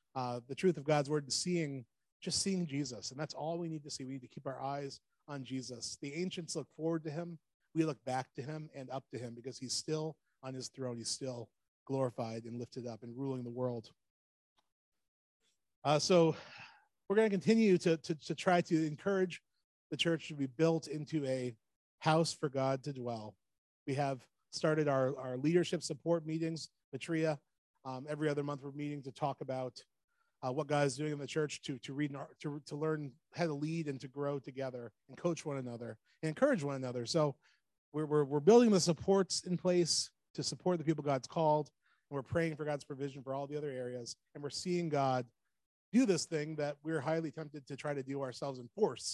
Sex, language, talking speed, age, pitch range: male, English, 210 wpm, 30-49, 130-160 Hz